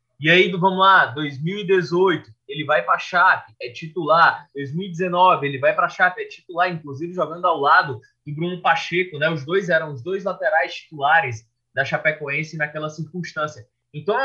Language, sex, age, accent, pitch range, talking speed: Portuguese, male, 20-39, Brazilian, 125-180 Hz, 170 wpm